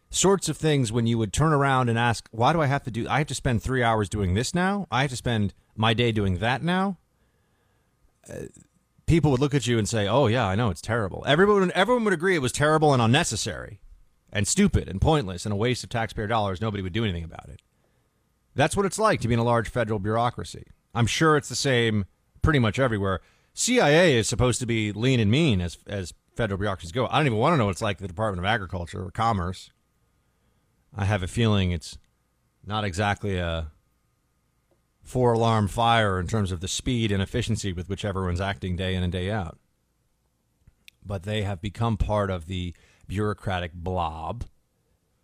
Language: English